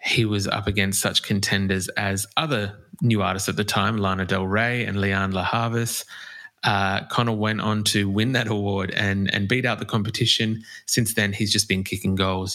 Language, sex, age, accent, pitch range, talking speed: English, male, 20-39, Australian, 100-115 Hz, 195 wpm